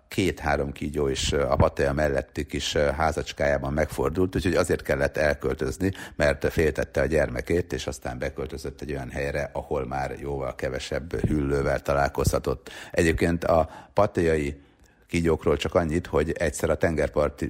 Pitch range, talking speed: 70-90 Hz, 135 wpm